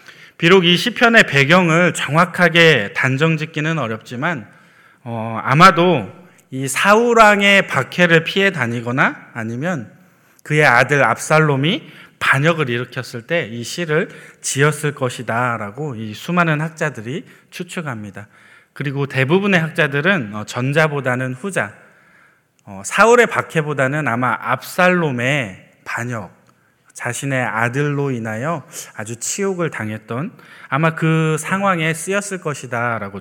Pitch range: 125-180 Hz